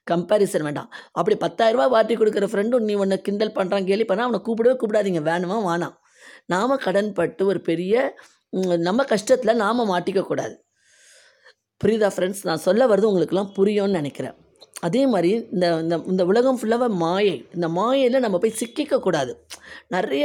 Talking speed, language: 140 wpm, Tamil